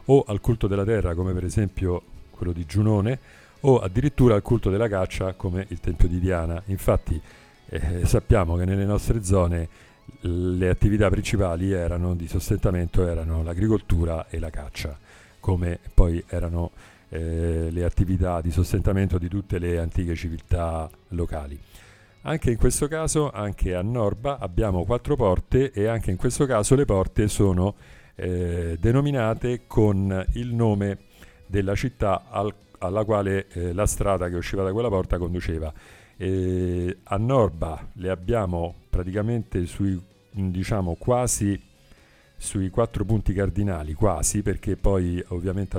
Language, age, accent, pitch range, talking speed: Italian, 40-59, native, 90-105 Hz, 140 wpm